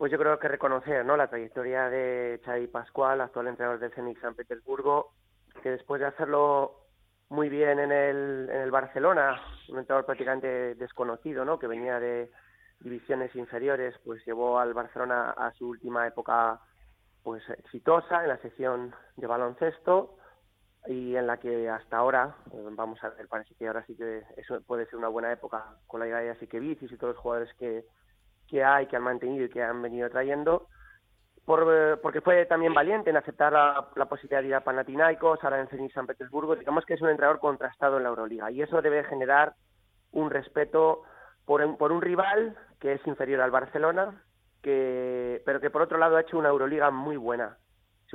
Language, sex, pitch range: Spanish, male, 120-145 Hz